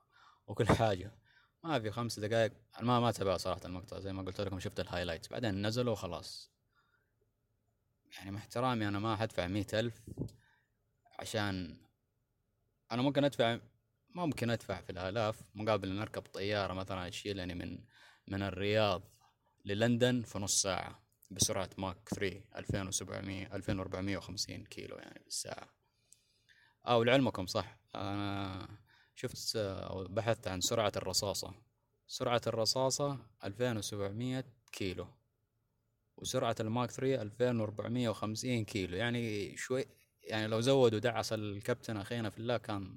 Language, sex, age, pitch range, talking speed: Arabic, male, 20-39, 100-120 Hz, 125 wpm